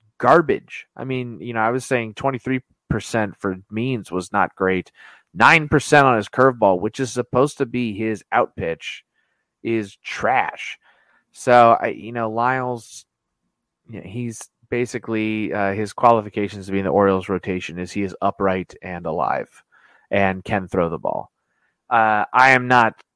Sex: male